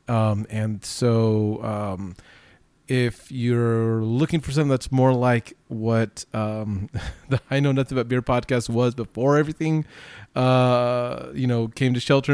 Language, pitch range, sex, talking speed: English, 110-135 Hz, male, 145 wpm